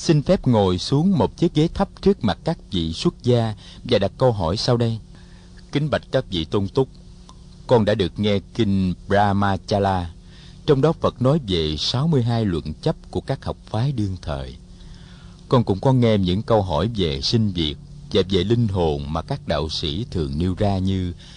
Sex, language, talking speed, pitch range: male, Vietnamese, 190 wpm, 90-130 Hz